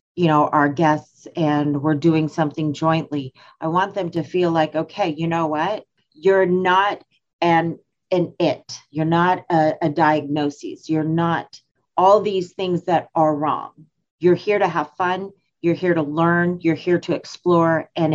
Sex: female